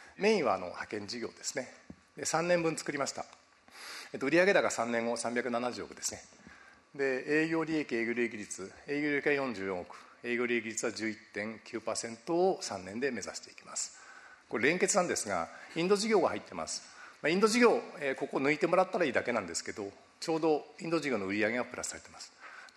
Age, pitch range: 50-69, 115-180 Hz